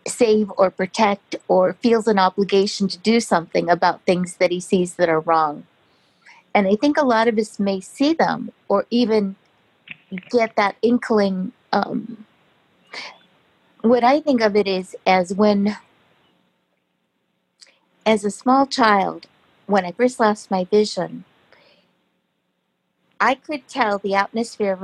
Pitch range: 185-220 Hz